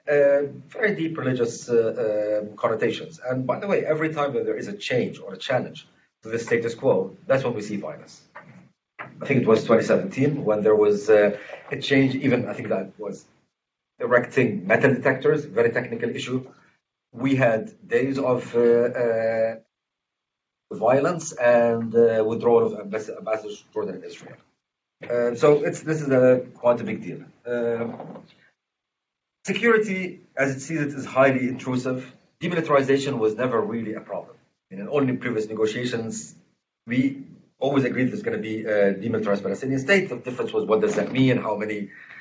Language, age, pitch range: English, 40-59, 115-145 Hz